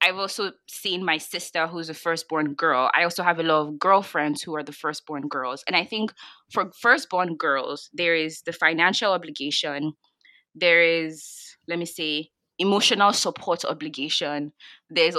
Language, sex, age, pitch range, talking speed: English, female, 20-39, 155-190 Hz, 160 wpm